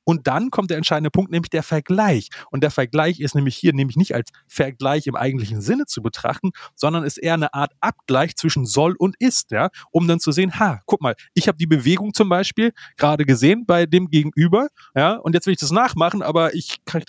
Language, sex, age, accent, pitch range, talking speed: German, male, 30-49, German, 135-175 Hz, 220 wpm